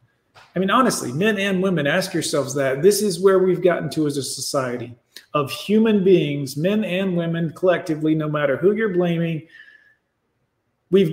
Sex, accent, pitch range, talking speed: male, American, 140-180 Hz, 165 wpm